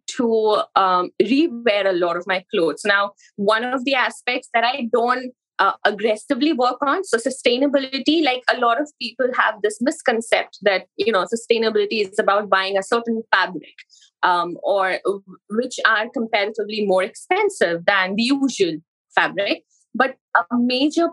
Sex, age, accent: female, 20-39, Indian